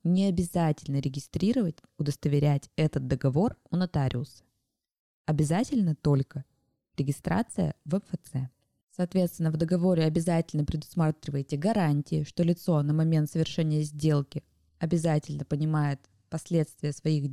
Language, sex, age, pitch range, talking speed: Russian, female, 20-39, 150-180 Hz, 100 wpm